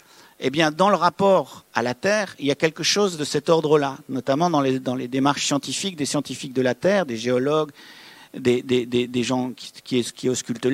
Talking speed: 225 wpm